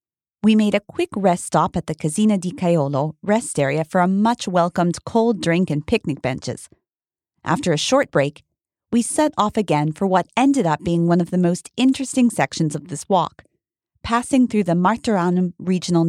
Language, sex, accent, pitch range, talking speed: English, female, American, 165-225 Hz, 180 wpm